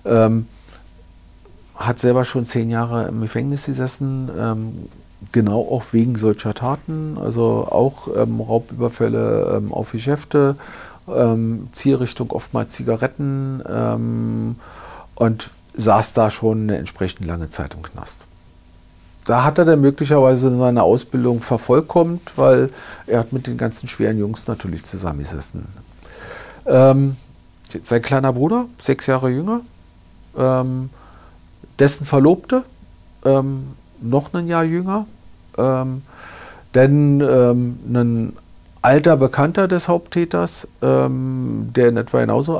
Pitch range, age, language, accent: 105-140 Hz, 50-69, German, German